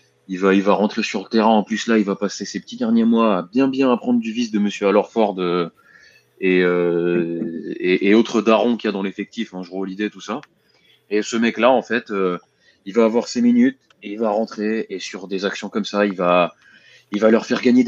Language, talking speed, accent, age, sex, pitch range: French, 240 wpm, French, 20-39, male, 95-115 Hz